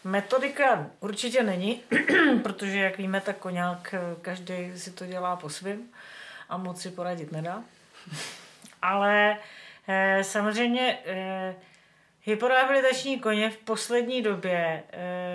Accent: native